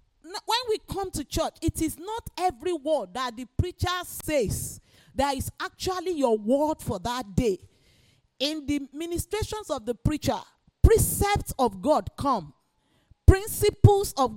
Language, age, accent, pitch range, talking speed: English, 40-59, Nigerian, 270-370 Hz, 140 wpm